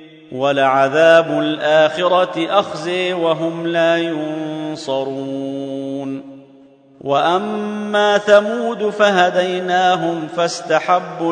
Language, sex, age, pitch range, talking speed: Arabic, male, 40-59, 155-180 Hz, 55 wpm